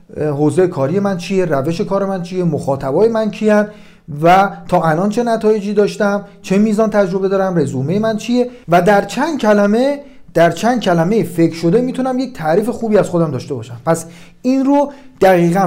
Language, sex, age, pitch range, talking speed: Persian, male, 40-59, 155-225 Hz, 170 wpm